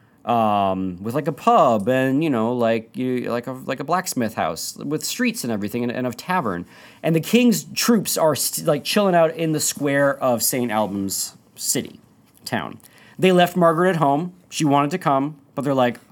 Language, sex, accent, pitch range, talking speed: English, male, American, 110-155 Hz, 195 wpm